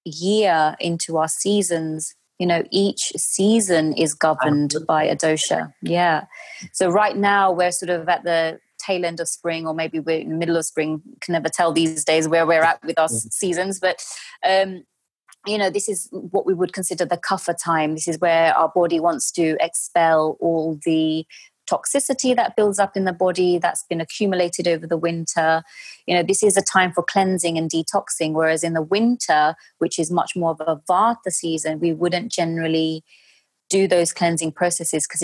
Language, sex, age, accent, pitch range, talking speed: English, female, 30-49, British, 160-185 Hz, 190 wpm